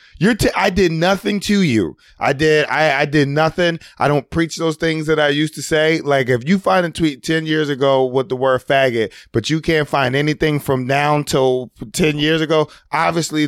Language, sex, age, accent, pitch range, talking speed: English, male, 30-49, American, 135-170 Hz, 215 wpm